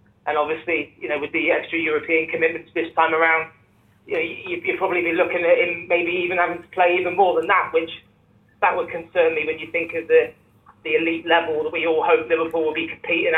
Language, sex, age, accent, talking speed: English, male, 20-39, British, 230 wpm